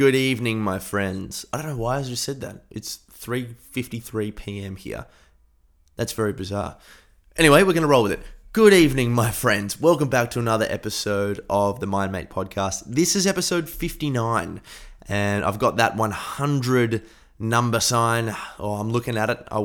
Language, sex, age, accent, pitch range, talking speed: English, male, 20-39, Australian, 100-125 Hz, 170 wpm